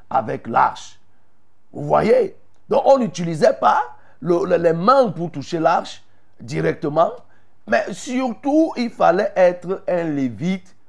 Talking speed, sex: 125 wpm, male